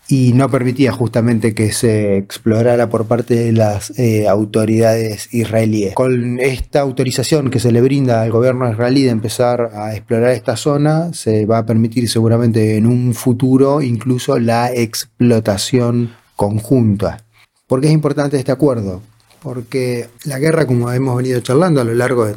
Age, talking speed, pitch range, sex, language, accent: 30-49, 155 wpm, 115-140 Hz, male, Spanish, Argentinian